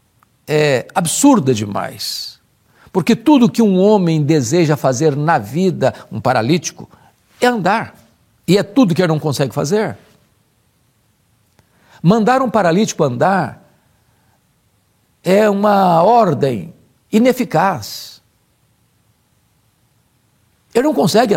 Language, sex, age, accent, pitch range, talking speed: Portuguese, male, 60-79, Brazilian, 135-200 Hz, 100 wpm